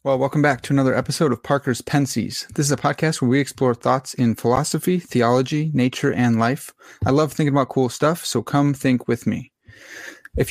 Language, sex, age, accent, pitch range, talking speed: English, male, 30-49, American, 125-150 Hz, 200 wpm